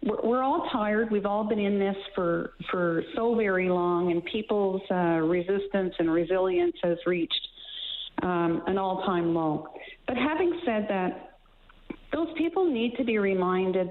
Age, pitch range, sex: 50-69, 180-235 Hz, female